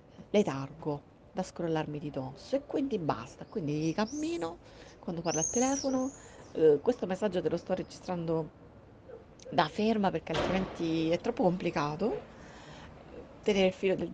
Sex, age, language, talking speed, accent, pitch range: female, 30-49, Italian, 135 wpm, native, 155-185 Hz